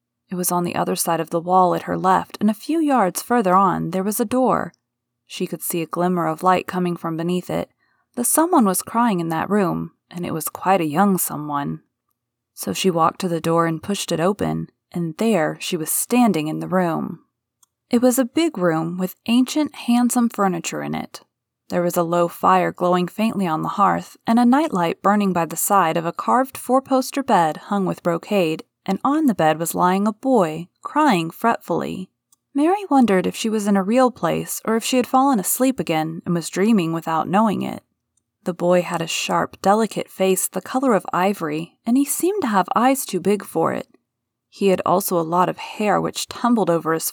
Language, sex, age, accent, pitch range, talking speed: English, female, 20-39, American, 170-235 Hz, 210 wpm